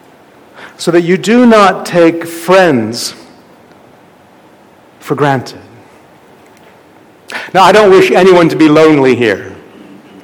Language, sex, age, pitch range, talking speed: English, male, 50-69, 160-220 Hz, 110 wpm